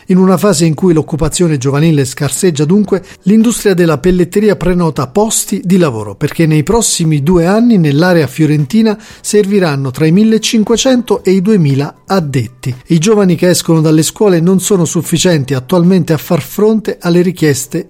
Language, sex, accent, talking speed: Italian, male, native, 155 wpm